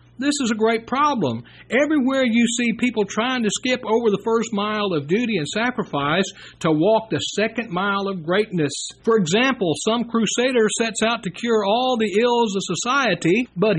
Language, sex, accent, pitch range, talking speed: English, male, American, 175-240 Hz, 180 wpm